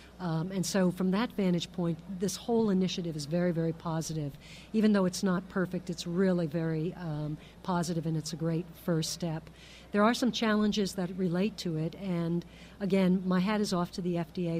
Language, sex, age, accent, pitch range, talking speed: English, female, 50-69, American, 170-195 Hz, 195 wpm